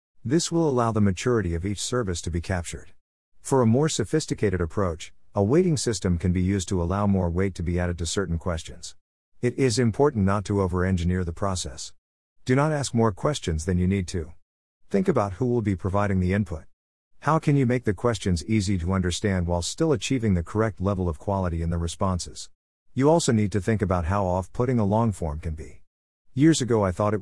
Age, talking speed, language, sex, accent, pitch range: 50-69, 210 wpm, English, male, American, 85-115 Hz